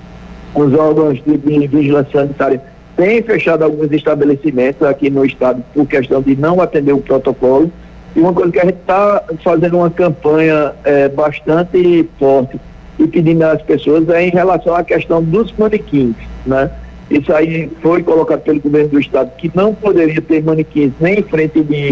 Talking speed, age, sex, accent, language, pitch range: 170 wpm, 60-79, male, Brazilian, Portuguese, 145-175 Hz